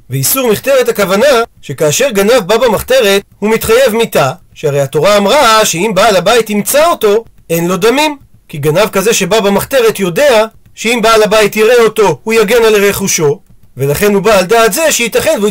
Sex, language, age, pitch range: male, Hebrew, 40-59, 190-240 Hz